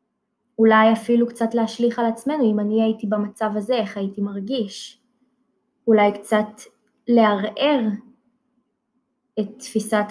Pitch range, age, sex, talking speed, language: 210-245 Hz, 20-39, female, 115 wpm, Hebrew